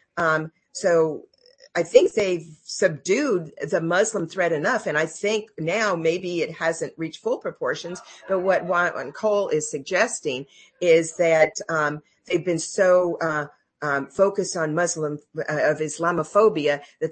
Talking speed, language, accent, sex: 150 wpm, English, American, female